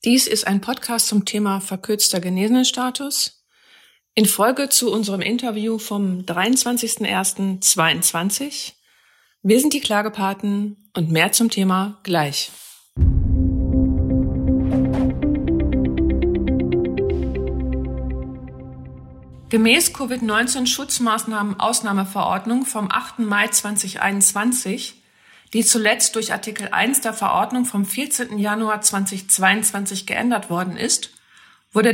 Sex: female